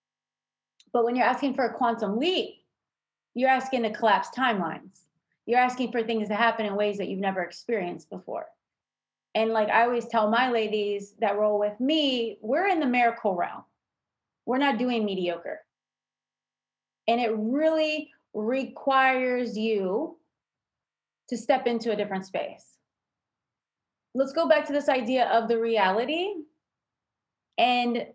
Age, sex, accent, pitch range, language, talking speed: 30-49, female, American, 220-265 Hz, English, 145 wpm